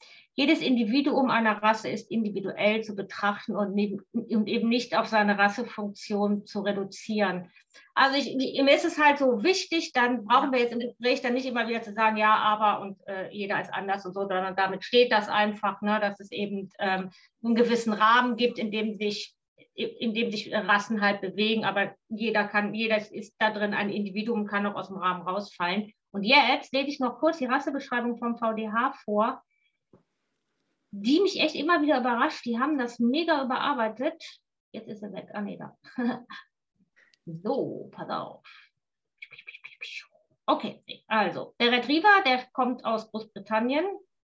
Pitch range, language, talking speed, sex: 205-265 Hz, German, 170 wpm, female